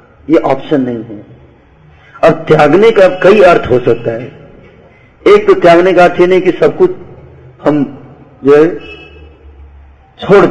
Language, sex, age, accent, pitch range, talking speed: Hindi, male, 50-69, native, 125-170 Hz, 145 wpm